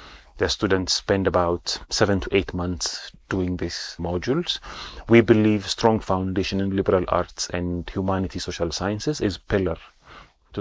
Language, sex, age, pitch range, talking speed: English, male, 30-49, 90-110 Hz, 140 wpm